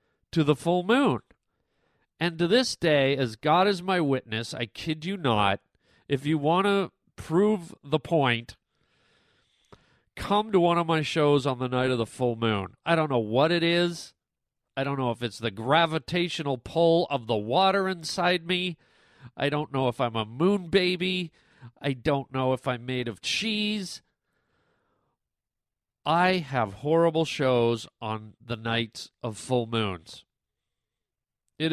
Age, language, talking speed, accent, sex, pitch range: 40-59, English, 155 wpm, American, male, 125-175 Hz